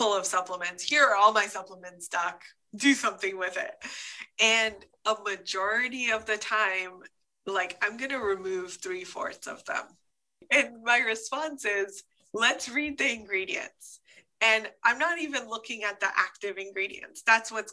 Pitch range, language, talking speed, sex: 190-245 Hz, English, 155 wpm, female